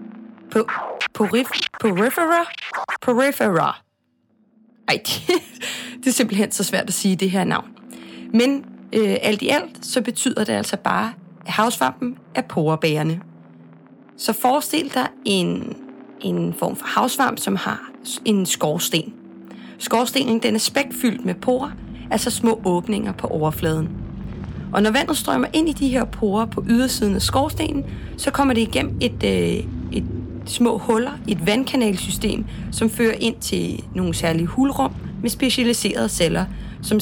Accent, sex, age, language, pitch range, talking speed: native, female, 30-49, Danish, 185-245 Hz, 145 wpm